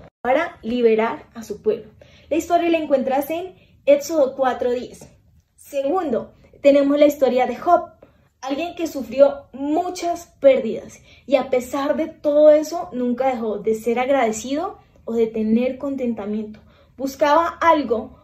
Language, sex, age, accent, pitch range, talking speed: Spanish, female, 10-29, Colombian, 240-300 Hz, 130 wpm